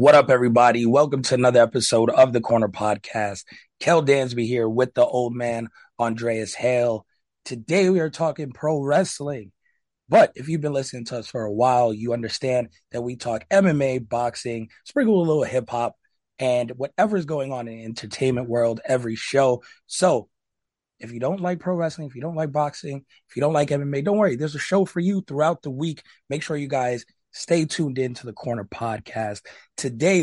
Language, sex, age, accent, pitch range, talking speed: English, male, 30-49, American, 115-145 Hz, 195 wpm